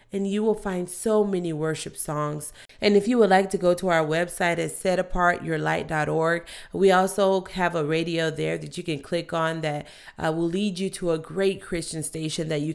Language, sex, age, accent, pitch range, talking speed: English, female, 30-49, American, 150-190 Hz, 200 wpm